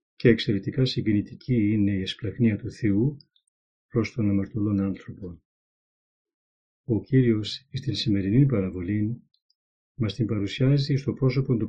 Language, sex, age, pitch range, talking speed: Greek, male, 40-59, 100-125 Hz, 120 wpm